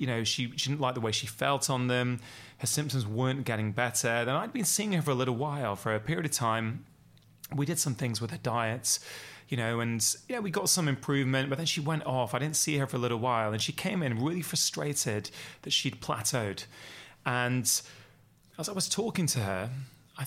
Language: English